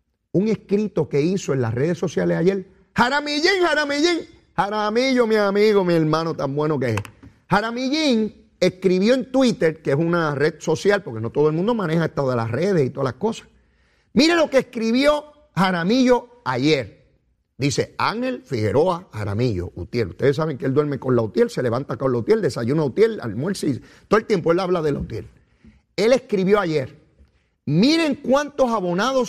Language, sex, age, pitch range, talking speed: Spanish, male, 40-59, 140-230 Hz, 170 wpm